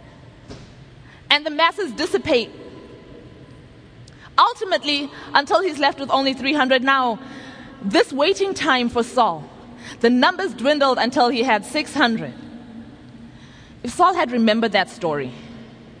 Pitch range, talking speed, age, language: 200-295 Hz, 115 wpm, 20-39, English